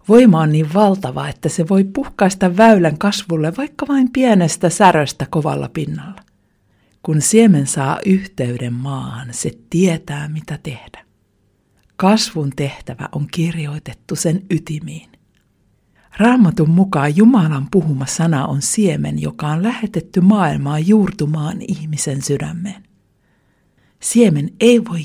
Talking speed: 115 wpm